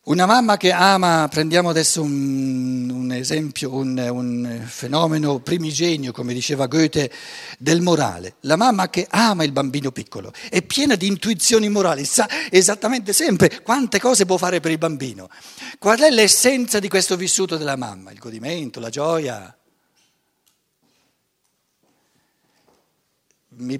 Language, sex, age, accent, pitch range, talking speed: Italian, male, 60-79, native, 145-205 Hz, 135 wpm